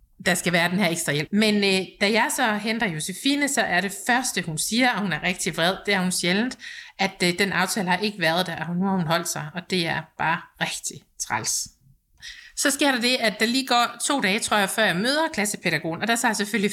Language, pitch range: Danish, 185-240 Hz